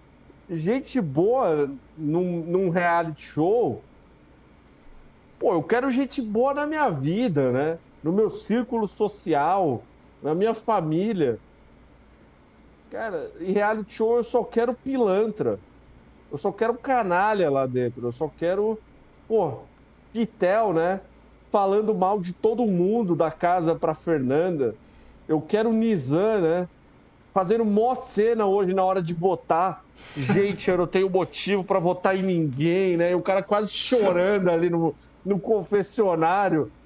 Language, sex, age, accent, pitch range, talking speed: Portuguese, male, 50-69, Brazilian, 170-225 Hz, 135 wpm